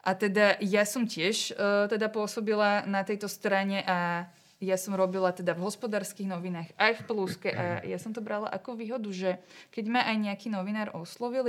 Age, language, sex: 20-39, Slovak, female